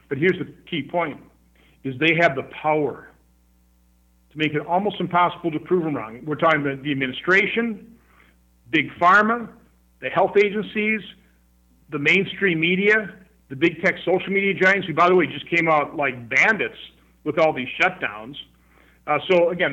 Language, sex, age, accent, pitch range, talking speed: English, male, 50-69, American, 135-190 Hz, 165 wpm